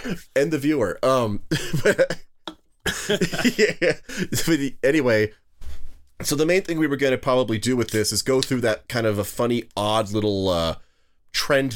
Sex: male